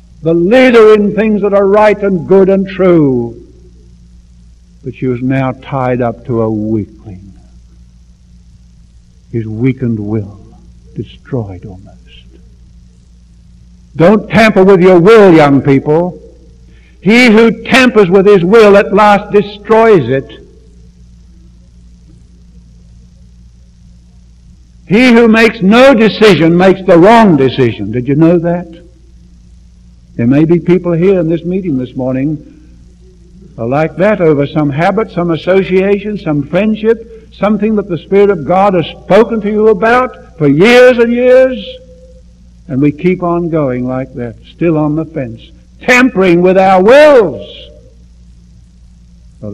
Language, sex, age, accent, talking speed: English, male, 60-79, American, 125 wpm